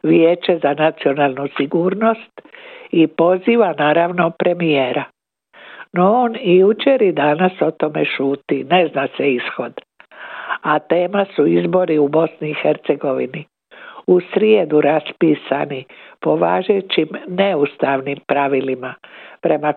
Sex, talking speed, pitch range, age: female, 105 wpm, 150-195 Hz, 60-79